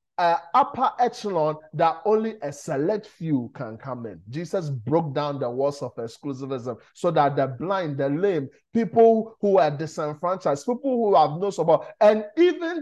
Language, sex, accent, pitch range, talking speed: English, male, Nigerian, 135-205 Hz, 165 wpm